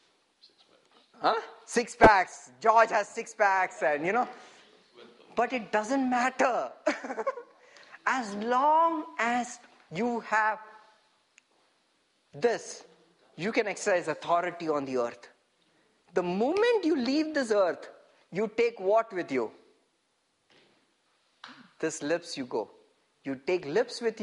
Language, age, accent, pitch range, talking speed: English, 50-69, Indian, 145-235 Hz, 115 wpm